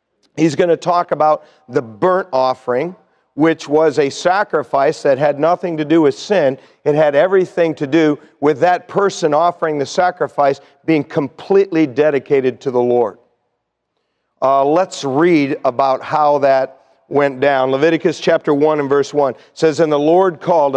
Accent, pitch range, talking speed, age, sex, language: American, 130-160 Hz, 160 wpm, 50-69, male, English